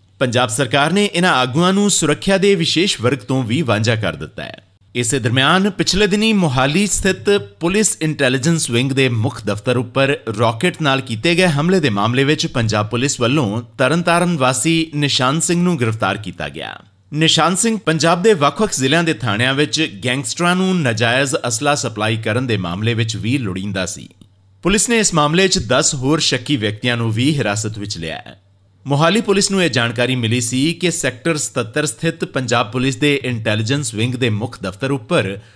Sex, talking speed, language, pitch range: male, 140 wpm, Punjabi, 115-165 Hz